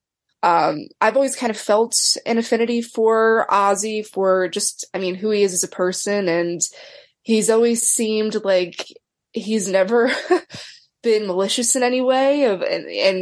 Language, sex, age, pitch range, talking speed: English, female, 20-39, 180-225 Hz, 155 wpm